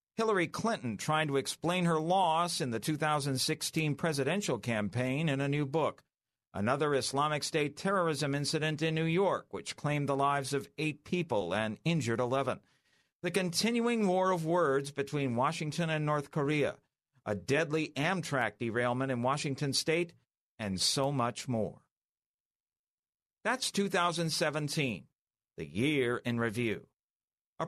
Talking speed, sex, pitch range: 135 wpm, male, 130-175 Hz